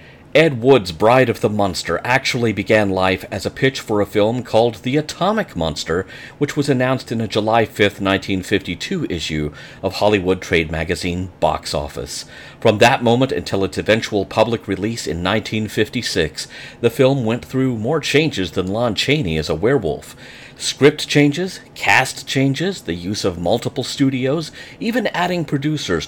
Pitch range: 95-130 Hz